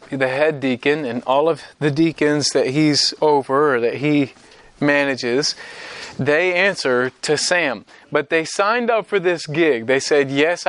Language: English